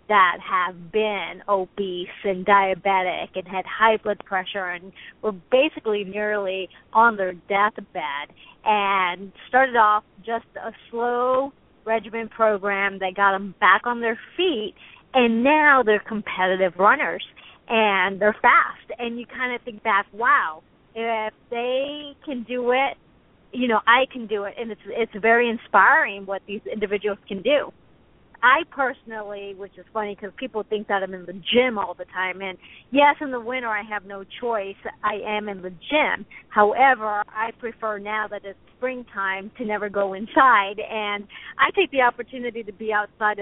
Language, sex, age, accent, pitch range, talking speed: English, female, 50-69, American, 195-235 Hz, 165 wpm